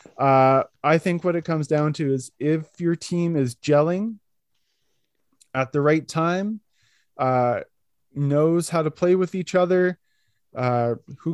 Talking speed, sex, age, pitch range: 150 wpm, male, 20-39, 125-160 Hz